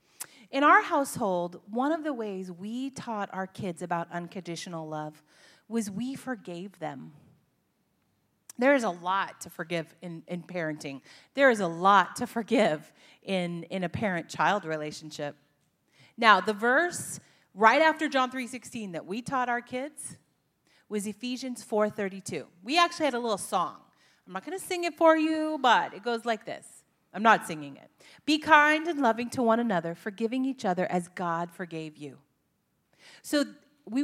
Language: English